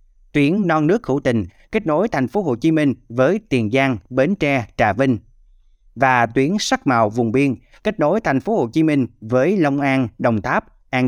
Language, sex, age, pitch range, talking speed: Vietnamese, male, 20-39, 115-155 Hz, 205 wpm